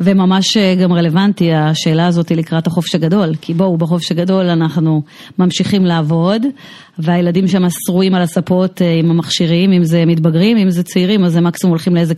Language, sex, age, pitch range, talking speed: Hebrew, female, 30-49, 170-220 Hz, 170 wpm